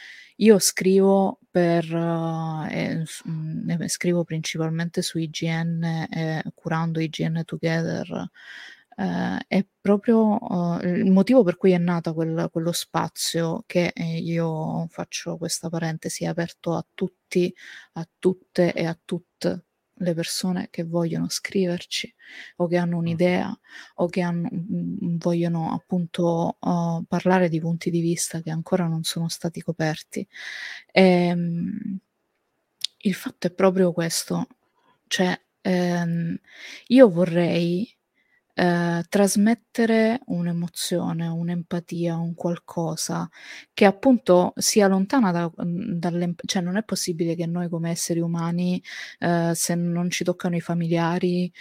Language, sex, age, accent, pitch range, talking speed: Italian, female, 20-39, native, 165-185 Hz, 115 wpm